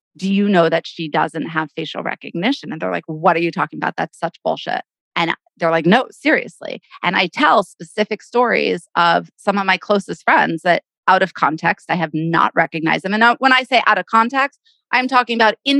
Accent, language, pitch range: American, English, 175-240 Hz